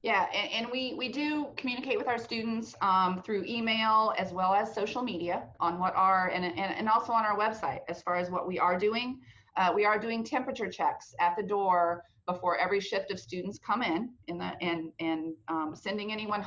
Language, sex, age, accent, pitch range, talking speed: English, female, 30-49, American, 170-210 Hz, 210 wpm